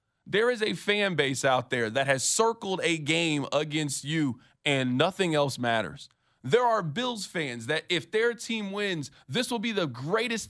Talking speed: 185 wpm